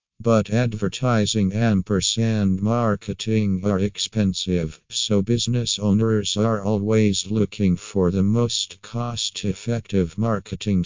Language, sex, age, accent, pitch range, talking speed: English, male, 50-69, American, 95-110 Hz, 95 wpm